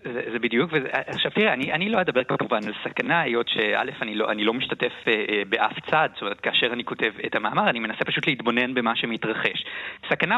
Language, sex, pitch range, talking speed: Hebrew, male, 115-170 Hz, 215 wpm